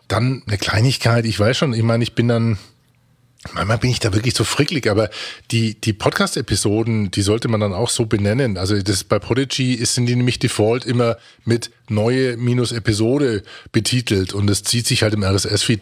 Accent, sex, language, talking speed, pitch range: German, male, German, 190 wpm, 105-130 Hz